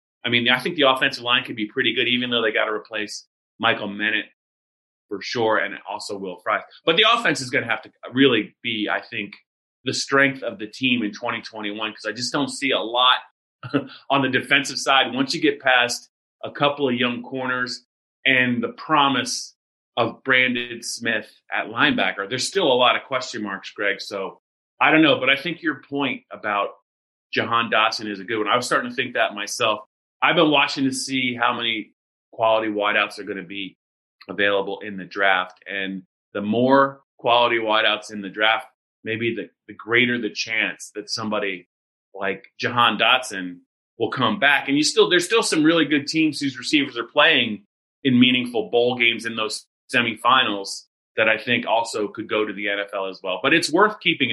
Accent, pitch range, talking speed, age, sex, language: American, 105-135 Hz, 195 wpm, 30-49, male, English